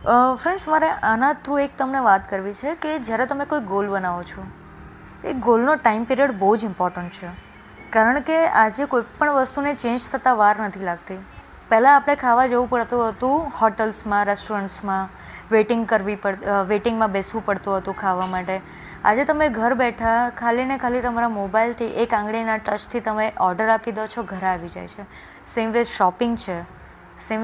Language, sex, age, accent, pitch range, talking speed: Gujarati, female, 20-39, native, 205-250 Hz, 170 wpm